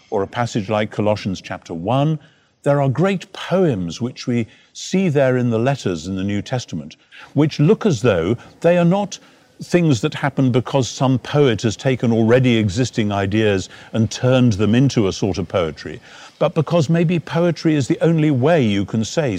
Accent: British